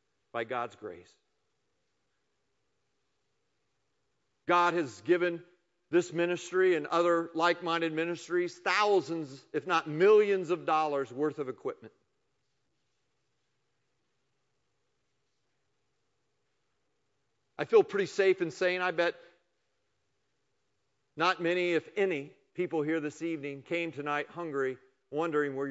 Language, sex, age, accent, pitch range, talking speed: English, male, 50-69, American, 130-175 Hz, 100 wpm